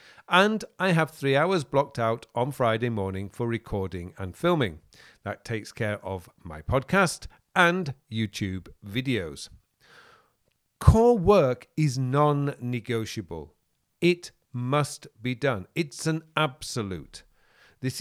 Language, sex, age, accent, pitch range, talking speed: English, male, 40-59, British, 110-165 Hz, 115 wpm